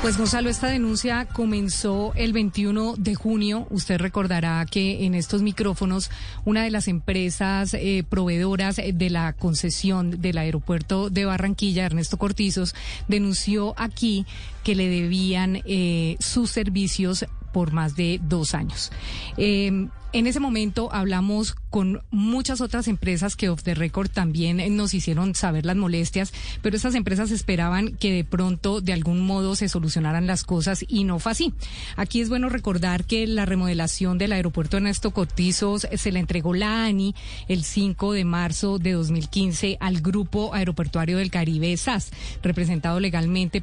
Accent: Colombian